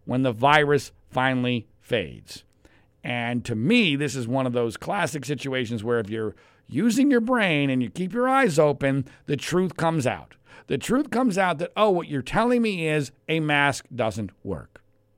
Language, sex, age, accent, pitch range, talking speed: English, male, 50-69, American, 125-180 Hz, 180 wpm